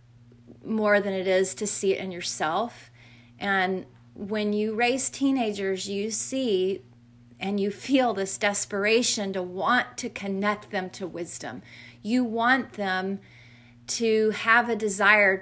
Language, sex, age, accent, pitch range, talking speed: English, female, 30-49, American, 180-220 Hz, 135 wpm